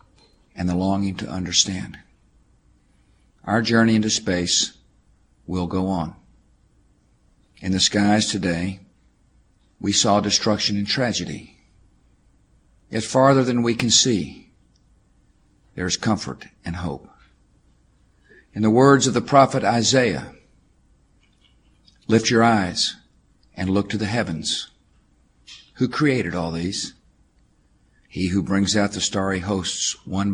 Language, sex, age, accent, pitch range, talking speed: English, male, 50-69, American, 85-110 Hz, 115 wpm